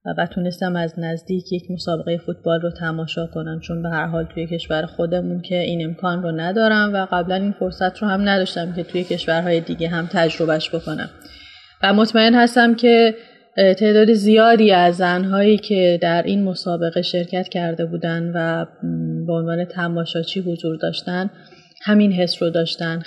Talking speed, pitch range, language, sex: 160 wpm, 170-195 Hz, Persian, female